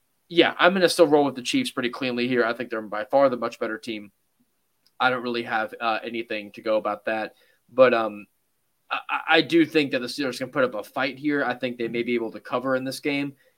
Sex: male